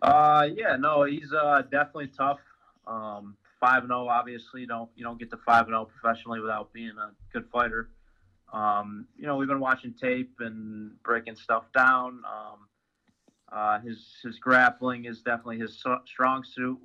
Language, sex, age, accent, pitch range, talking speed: English, male, 20-39, American, 110-130 Hz, 175 wpm